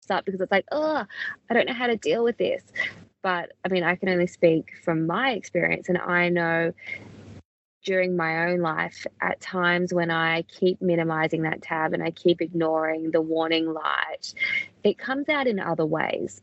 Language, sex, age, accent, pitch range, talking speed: English, female, 20-39, Australian, 165-180 Hz, 185 wpm